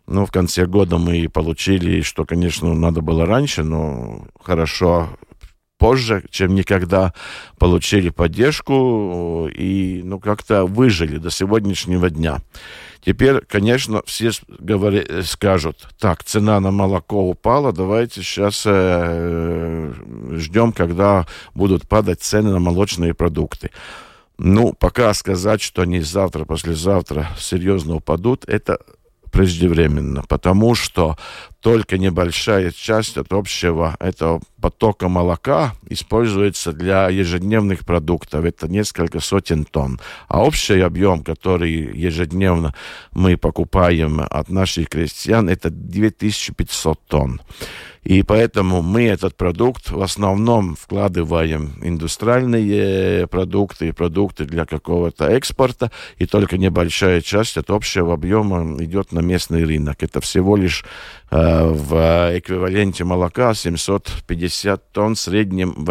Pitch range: 85-100 Hz